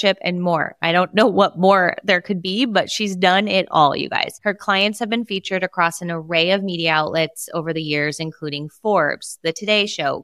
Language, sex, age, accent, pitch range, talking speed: English, female, 20-39, American, 170-210 Hz, 210 wpm